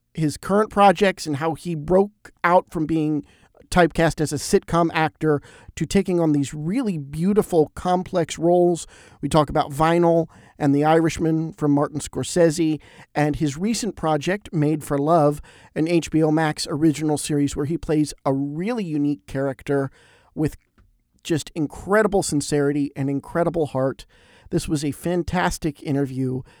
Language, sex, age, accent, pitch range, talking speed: English, male, 50-69, American, 145-175 Hz, 145 wpm